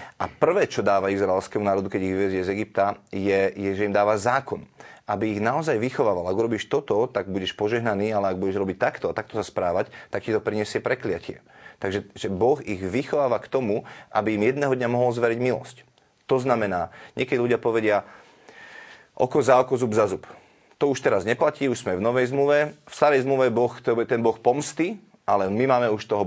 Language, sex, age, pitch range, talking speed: Slovak, male, 30-49, 100-125 Hz, 200 wpm